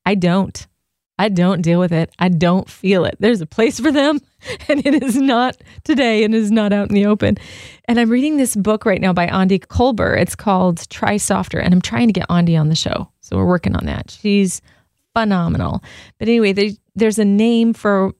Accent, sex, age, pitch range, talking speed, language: American, female, 30-49, 185-230 Hz, 215 wpm, English